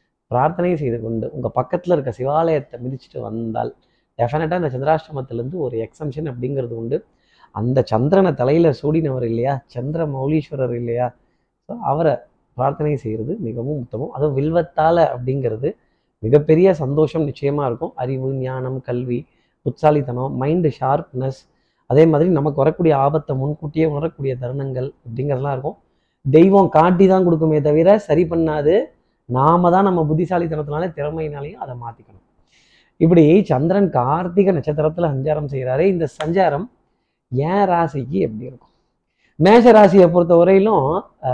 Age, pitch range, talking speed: 30-49, 130-170 Hz, 120 wpm